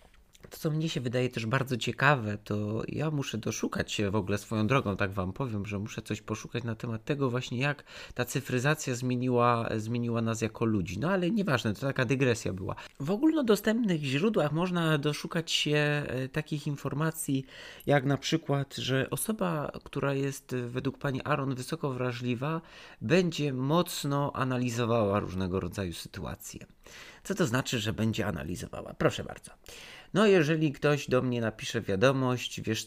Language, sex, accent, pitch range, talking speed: Polish, male, native, 110-150 Hz, 155 wpm